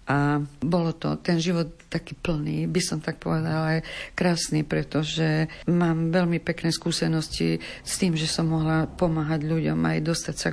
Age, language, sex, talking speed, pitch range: 50-69, Slovak, female, 160 wpm, 150-170 Hz